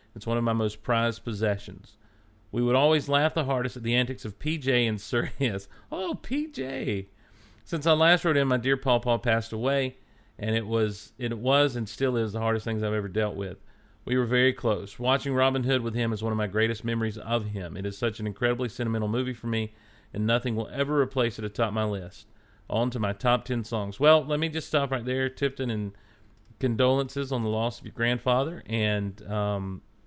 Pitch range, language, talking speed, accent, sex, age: 110-135 Hz, English, 220 wpm, American, male, 40-59